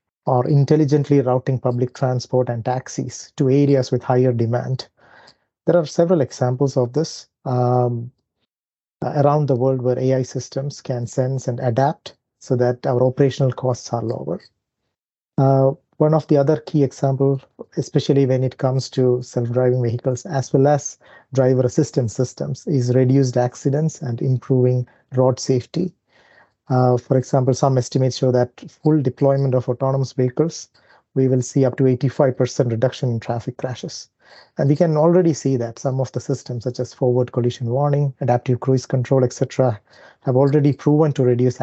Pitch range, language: 125-140 Hz, English